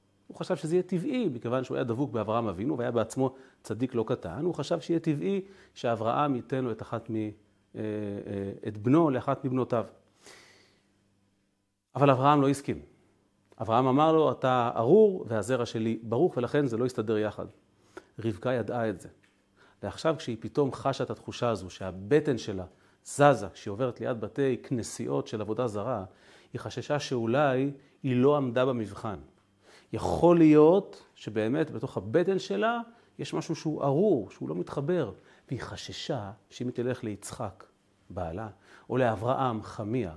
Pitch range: 110-145 Hz